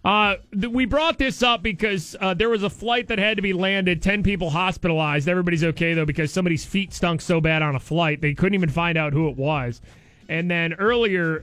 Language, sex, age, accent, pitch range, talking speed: English, male, 30-49, American, 155-225 Hz, 225 wpm